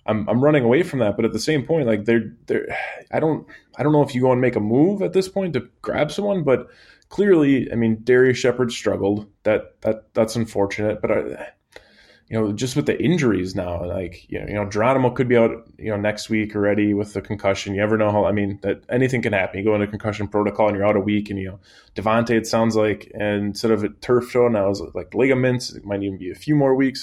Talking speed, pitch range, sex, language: 255 wpm, 100-120 Hz, male, English